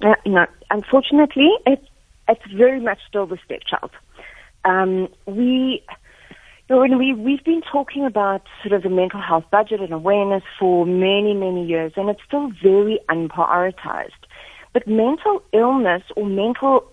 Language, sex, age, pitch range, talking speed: English, female, 40-59, 175-250 Hz, 130 wpm